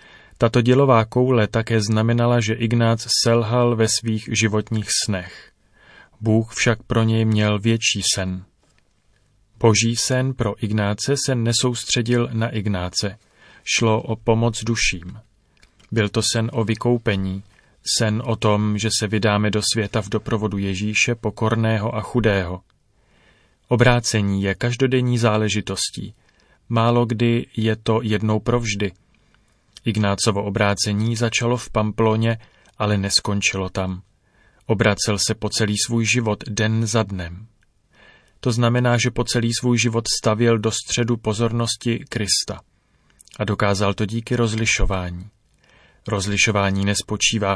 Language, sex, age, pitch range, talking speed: Czech, male, 30-49, 105-120 Hz, 120 wpm